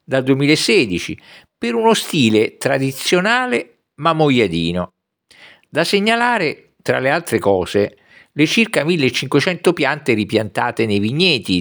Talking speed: 110 wpm